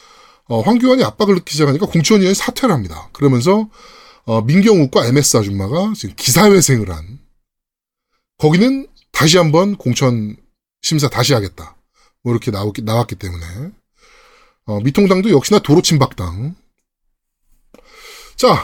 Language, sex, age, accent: Korean, male, 20-39, native